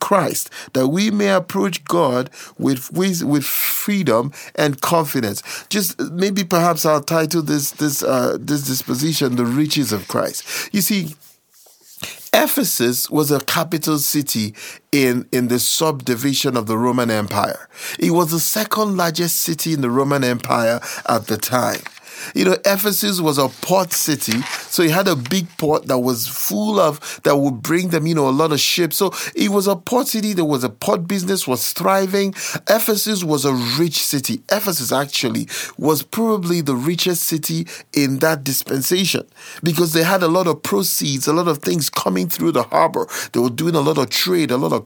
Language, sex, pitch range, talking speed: English, male, 140-200 Hz, 180 wpm